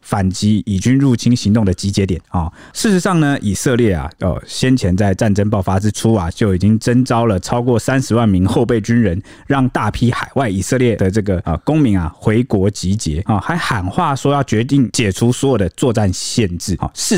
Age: 20-39